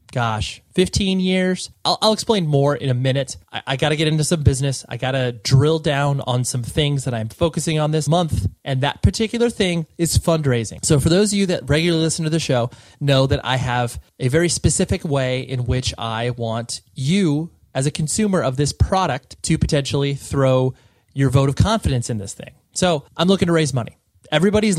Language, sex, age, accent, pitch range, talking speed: English, male, 30-49, American, 125-165 Hz, 205 wpm